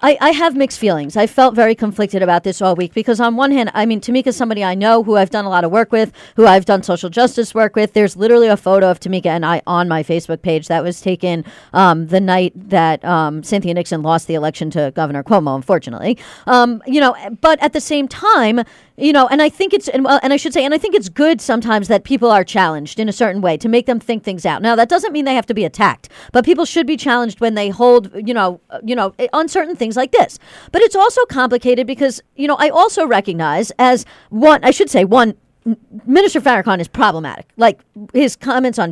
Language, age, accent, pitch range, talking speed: English, 40-59, American, 195-260 Hz, 240 wpm